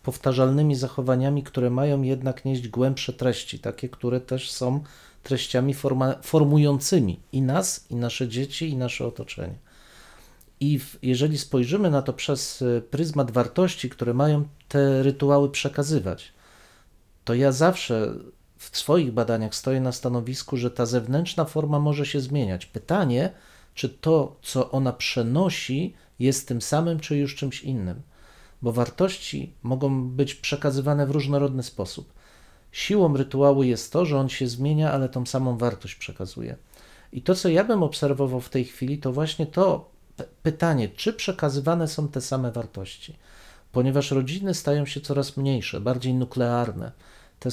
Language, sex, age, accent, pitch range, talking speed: Polish, male, 40-59, native, 125-145 Hz, 145 wpm